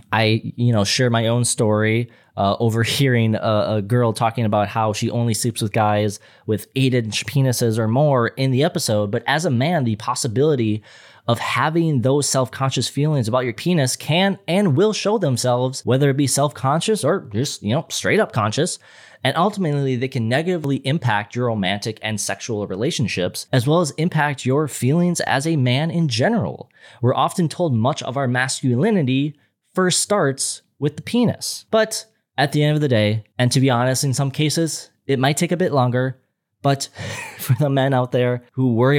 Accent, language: American, English